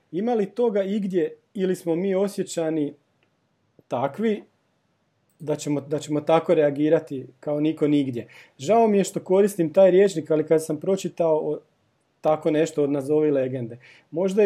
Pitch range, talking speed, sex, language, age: 145-175 Hz, 150 wpm, male, Croatian, 40-59